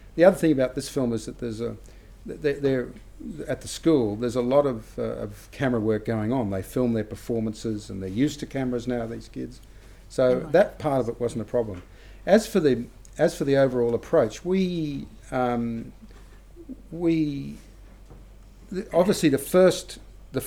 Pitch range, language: 105-125 Hz, English